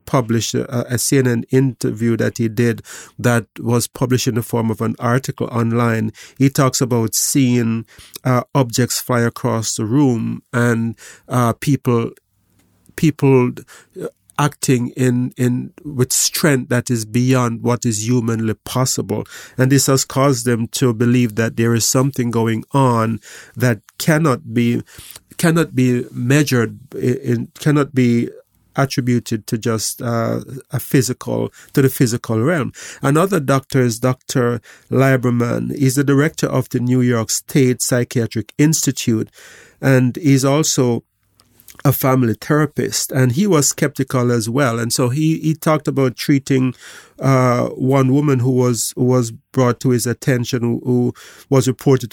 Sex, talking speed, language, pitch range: male, 140 wpm, English, 115-135 Hz